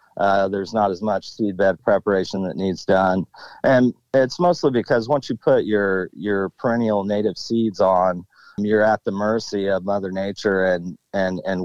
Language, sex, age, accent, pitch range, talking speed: English, male, 40-59, American, 95-110 Hz, 175 wpm